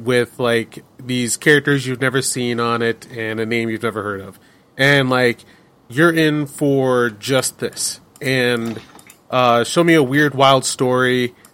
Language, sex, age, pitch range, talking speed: English, male, 30-49, 115-145 Hz, 160 wpm